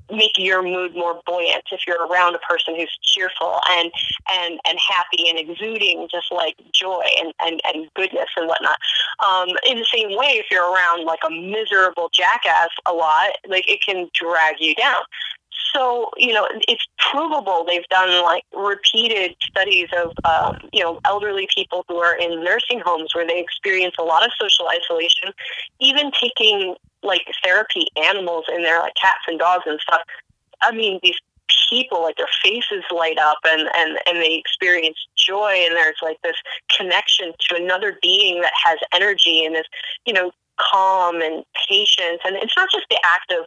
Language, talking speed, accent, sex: English, 180 wpm, American, female